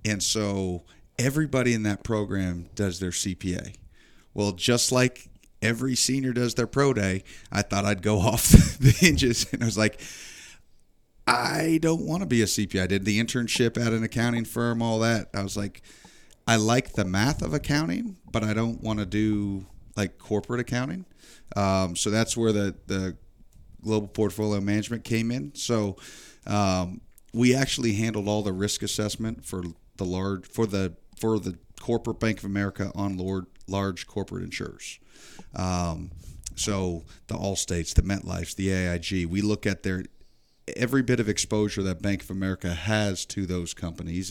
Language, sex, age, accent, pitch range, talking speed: English, male, 30-49, American, 95-115 Hz, 170 wpm